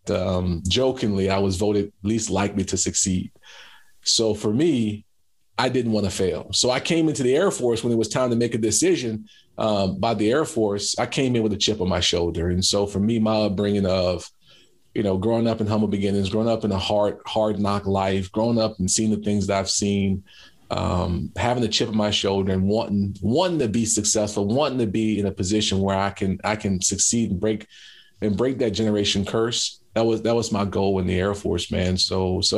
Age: 40-59